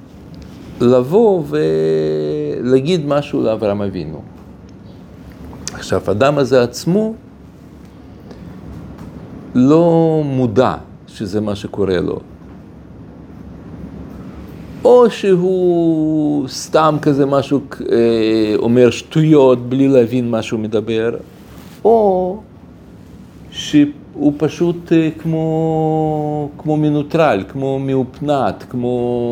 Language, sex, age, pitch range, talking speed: Hebrew, male, 50-69, 105-155 Hz, 75 wpm